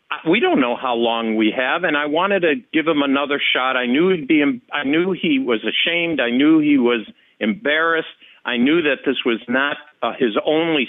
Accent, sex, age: American, male, 50-69